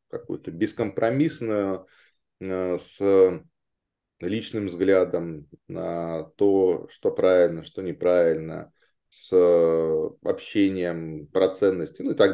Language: Russian